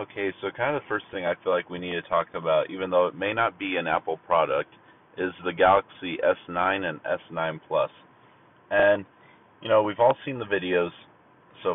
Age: 30-49